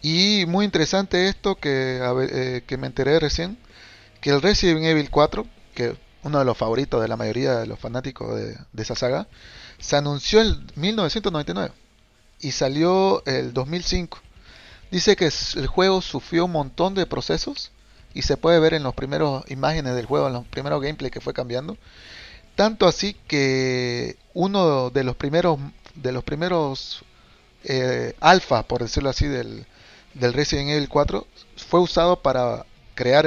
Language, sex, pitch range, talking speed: Spanish, male, 125-160 Hz, 160 wpm